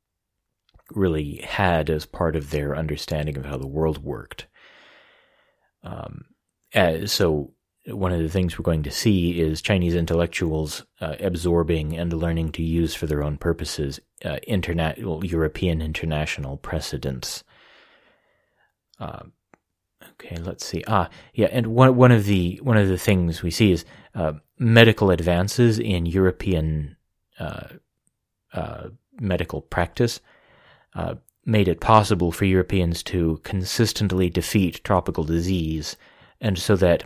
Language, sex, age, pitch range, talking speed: English, male, 30-49, 80-95 Hz, 135 wpm